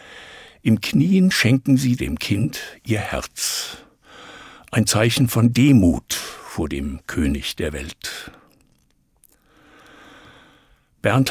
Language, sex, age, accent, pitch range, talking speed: German, male, 60-79, German, 85-125 Hz, 95 wpm